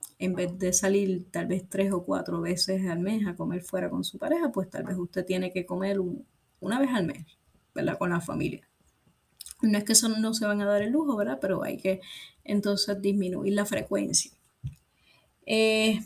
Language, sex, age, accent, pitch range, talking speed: Spanish, female, 20-39, American, 185-205 Hz, 195 wpm